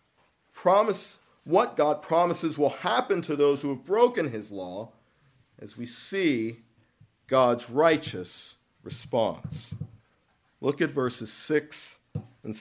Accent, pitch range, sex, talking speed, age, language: American, 125-170 Hz, male, 115 wpm, 50-69, English